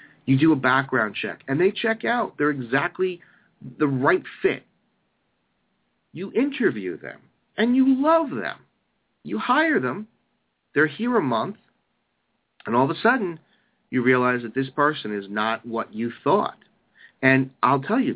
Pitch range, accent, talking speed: 125-210 Hz, American, 155 wpm